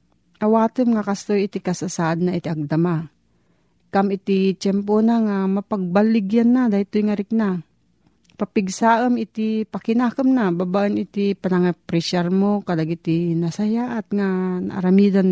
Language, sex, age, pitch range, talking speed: Filipino, female, 40-59, 175-215 Hz, 130 wpm